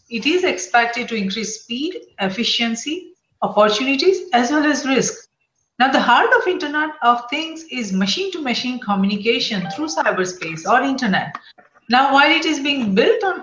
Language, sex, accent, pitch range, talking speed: English, female, Indian, 210-295 Hz, 155 wpm